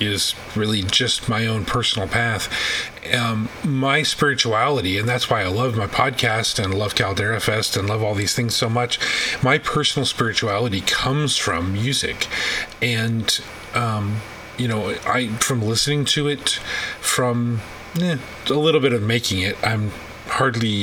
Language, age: English, 30-49